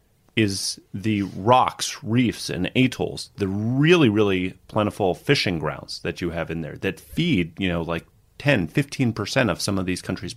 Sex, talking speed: male, 170 wpm